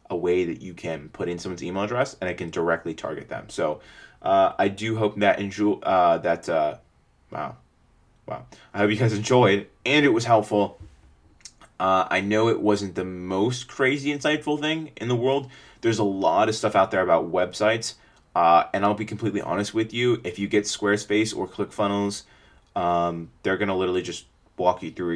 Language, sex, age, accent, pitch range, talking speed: English, male, 20-39, American, 85-110 Hz, 195 wpm